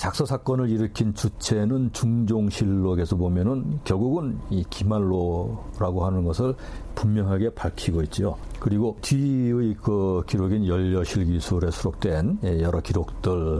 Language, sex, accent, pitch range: Korean, male, native, 85-110 Hz